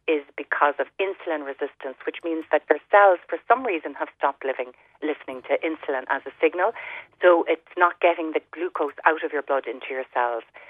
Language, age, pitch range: English, 40-59, 135-185 Hz